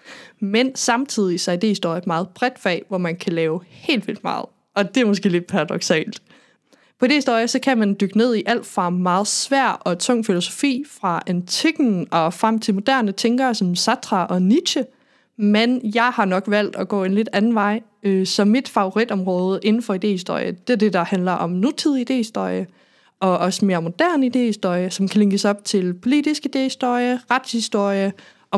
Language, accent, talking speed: Danish, native, 180 wpm